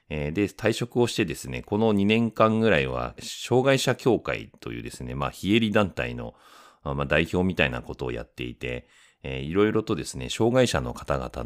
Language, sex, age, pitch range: Japanese, male, 40-59, 65-100 Hz